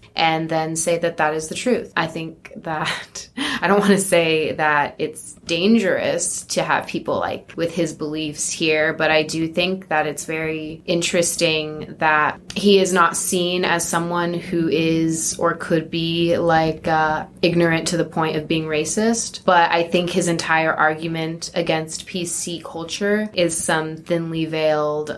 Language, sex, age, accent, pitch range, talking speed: English, female, 20-39, American, 155-185 Hz, 165 wpm